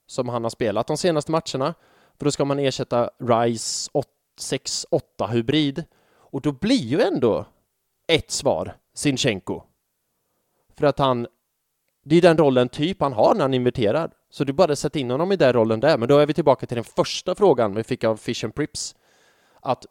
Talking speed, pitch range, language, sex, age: 190 wpm, 115-150 Hz, English, male, 20-39